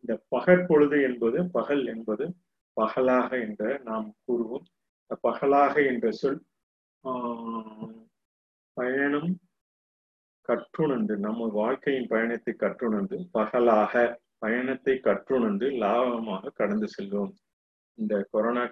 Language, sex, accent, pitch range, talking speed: Tamil, male, native, 110-140 Hz, 90 wpm